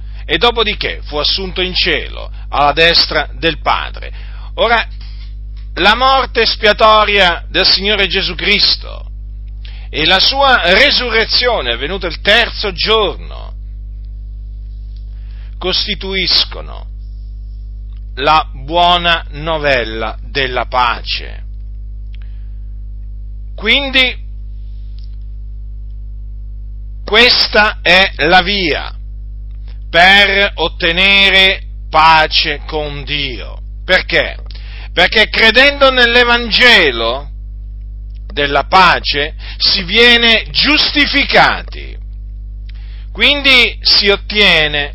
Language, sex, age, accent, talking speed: Italian, male, 50-69, native, 70 wpm